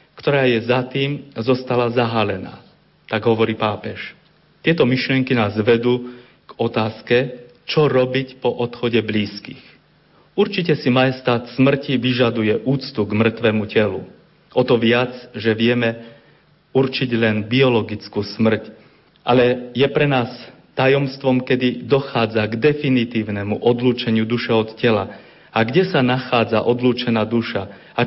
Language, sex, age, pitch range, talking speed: Slovak, male, 40-59, 115-135 Hz, 125 wpm